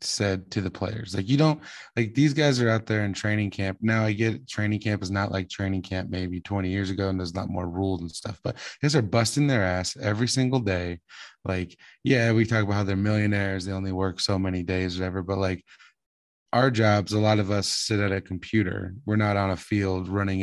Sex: male